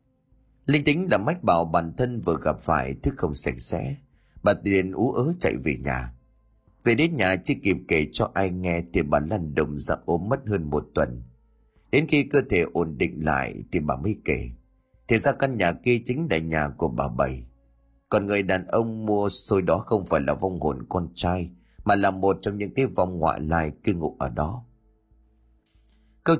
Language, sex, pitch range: Vietnamese, male, 85-115 Hz